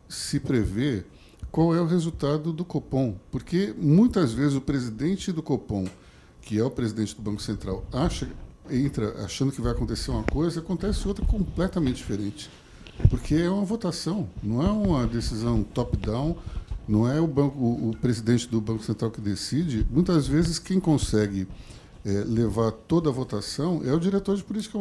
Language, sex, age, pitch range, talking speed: Portuguese, male, 60-79, 115-165 Hz, 155 wpm